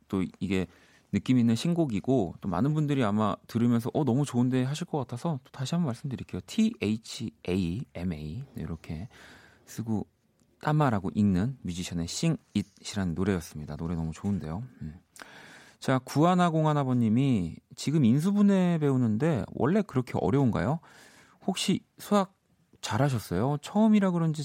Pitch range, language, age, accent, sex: 90-145 Hz, Korean, 40-59, native, male